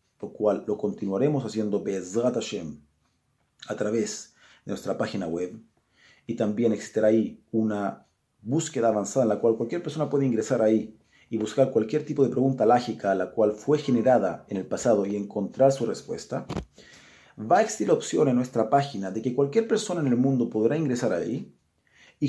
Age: 40-59